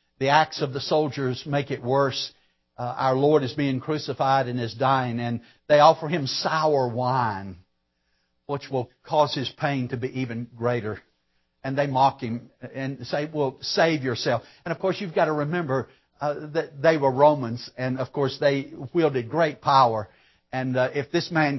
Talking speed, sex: 180 wpm, male